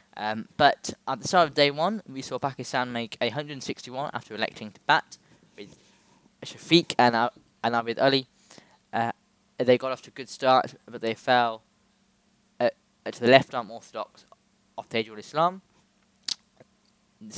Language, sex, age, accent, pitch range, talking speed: English, male, 10-29, British, 115-145 Hz, 155 wpm